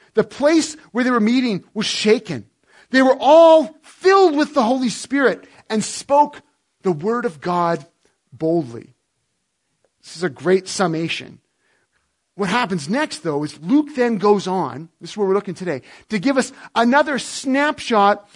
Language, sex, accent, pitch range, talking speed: English, male, American, 185-275 Hz, 155 wpm